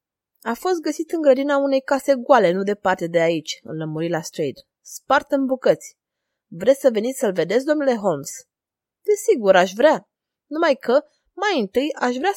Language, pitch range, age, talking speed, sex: Romanian, 190-275 Hz, 20-39, 170 wpm, female